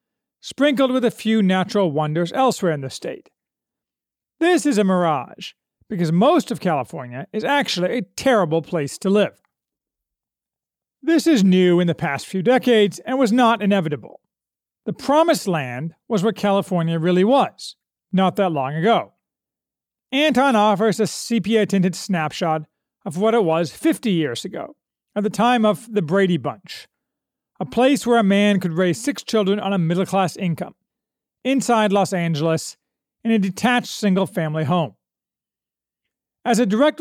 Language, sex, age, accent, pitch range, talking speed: English, male, 40-59, American, 175-240 Hz, 150 wpm